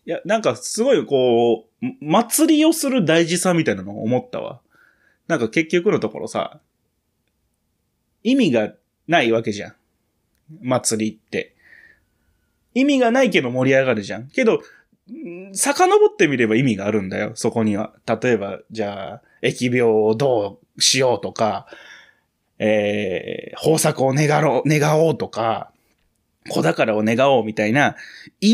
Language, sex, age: Japanese, male, 20-39